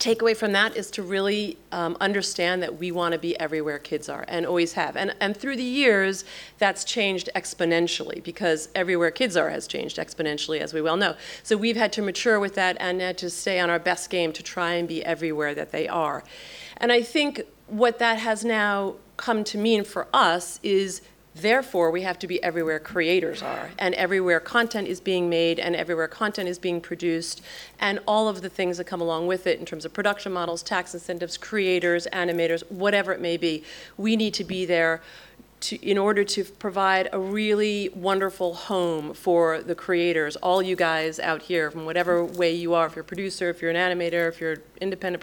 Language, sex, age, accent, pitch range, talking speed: English, female, 40-59, American, 170-200 Hz, 205 wpm